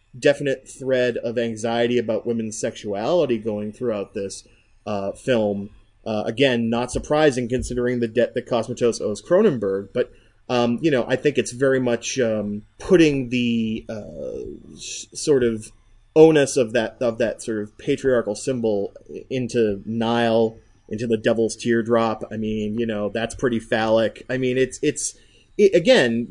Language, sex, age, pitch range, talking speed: English, male, 30-49, 110-135 Hz, 150 wpm